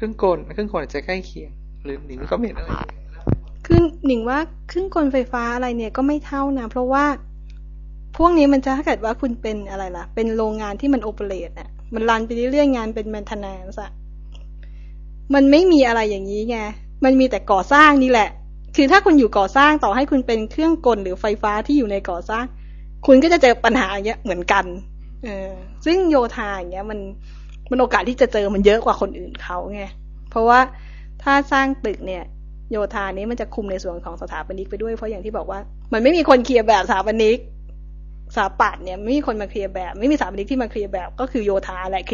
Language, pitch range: Thai, 190-255 Hz